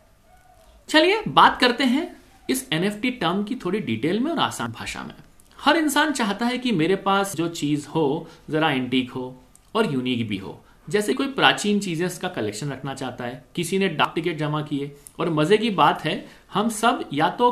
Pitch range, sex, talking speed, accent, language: 130-205 Hz, male, 190 wpm, native, Hindi